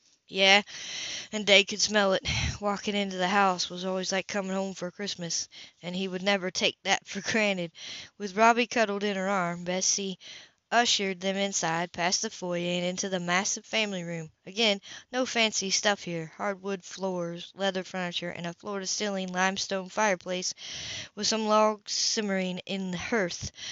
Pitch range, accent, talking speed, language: 180-210 Hz, American, 165 wpm, English